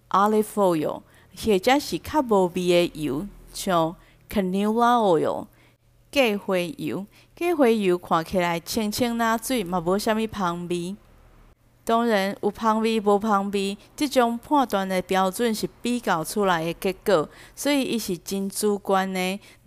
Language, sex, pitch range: Chinese, female, 185-240 Hz